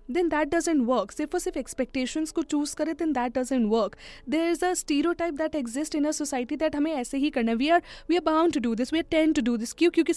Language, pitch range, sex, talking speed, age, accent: Hindi, 255-350 Hz, female, 265 wpm, 10-29, native